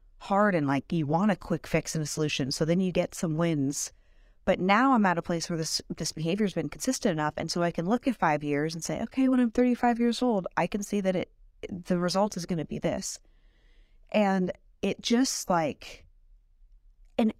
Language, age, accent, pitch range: English, 30-49, American, 160-210 Hz